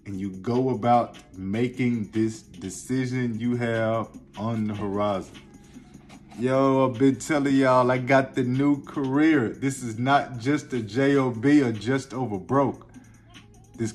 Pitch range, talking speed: 110-135 Hz, 140 wpm